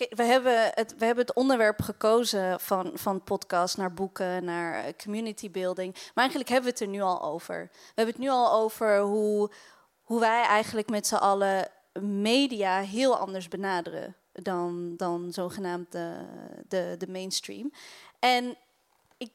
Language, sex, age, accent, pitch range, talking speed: Dutch, female, 20-39, Dutch, 195-245 Hz, 160 wpm